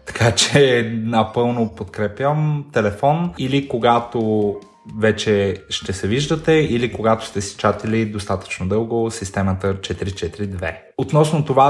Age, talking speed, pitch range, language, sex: 20-39, 115 wpm, 105-125 Hz, Bulgarian, male